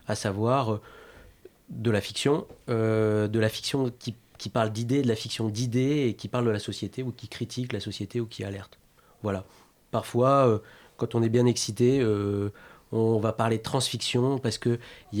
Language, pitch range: French, 105-125 Hz